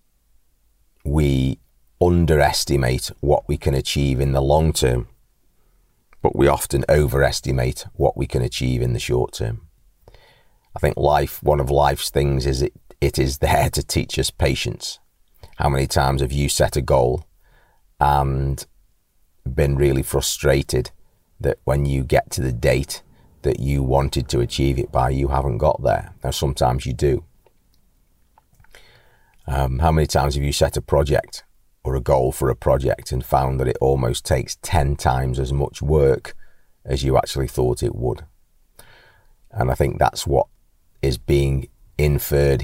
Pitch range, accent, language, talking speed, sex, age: 65-70 Hz, British, English, 160 wpm, male, 40-59